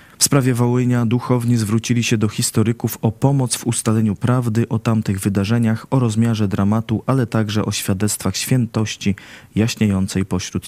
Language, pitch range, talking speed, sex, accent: Polish, 105-120 Hz, 145 wpm, male, native